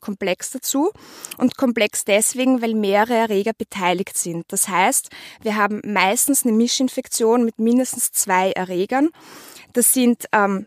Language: German